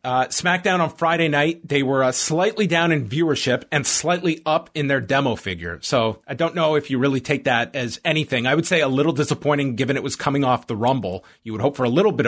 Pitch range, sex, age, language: 120-160 Hz, male, 30-49, English